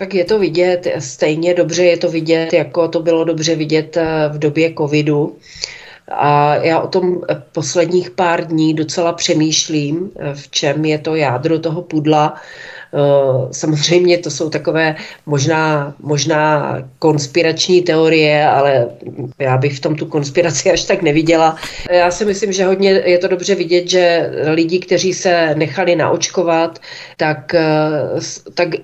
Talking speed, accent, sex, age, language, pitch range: 140 wpm, native, female, 40-59, Czech, 155-175 Hz